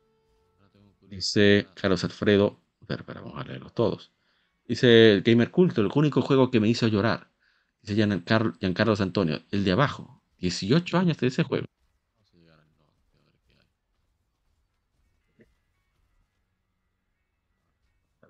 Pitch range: 90-120 Hz